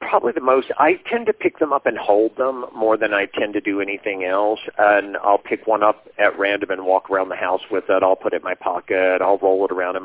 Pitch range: 95-115 Hz